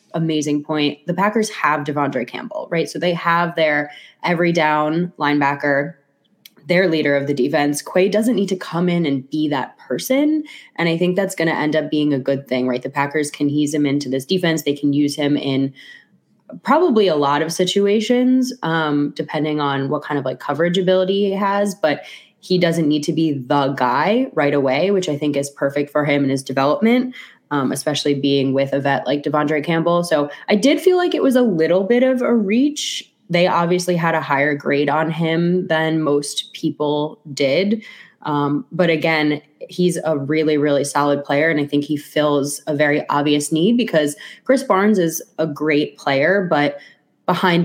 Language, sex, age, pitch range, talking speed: English, female, 20-39, 145-180 Hz, 195 wpm